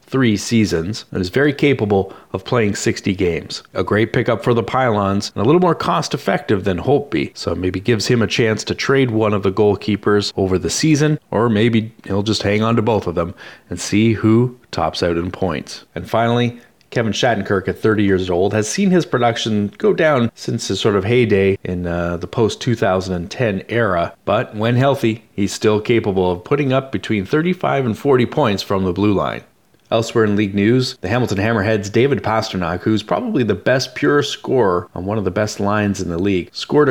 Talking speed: 200 wpm